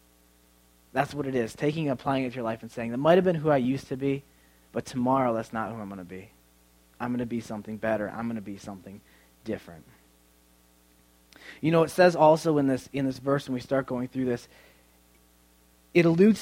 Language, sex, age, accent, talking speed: English, male, 20-39, American, 220 wpm